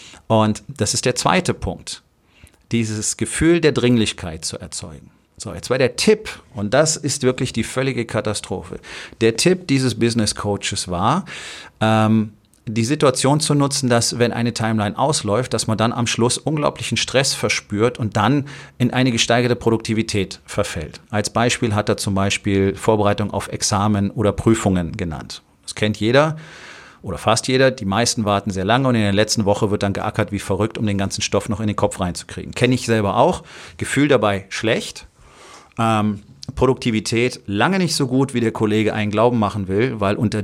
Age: 40-59